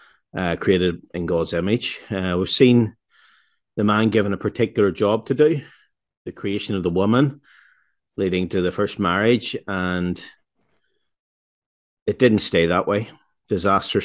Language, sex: English, male